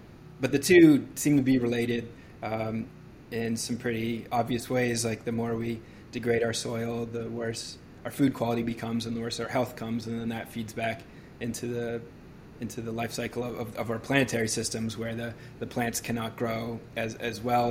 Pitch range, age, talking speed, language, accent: 115-130 Hz, 20-39, 195 wpm, English, American